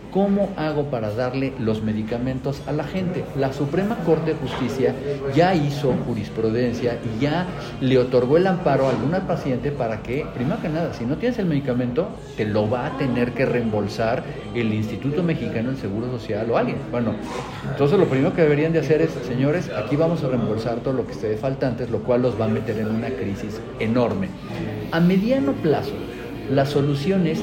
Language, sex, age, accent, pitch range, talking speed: Spanish, male, 50-69, Mexican, 125-160 Hz, 190 wpm